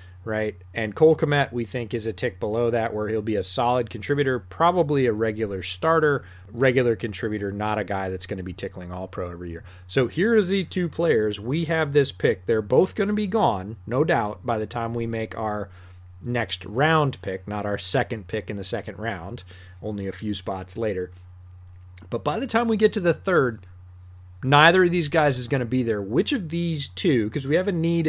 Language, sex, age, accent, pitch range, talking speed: English, male, 30-49, American, 100-140 Hz, 220 wpm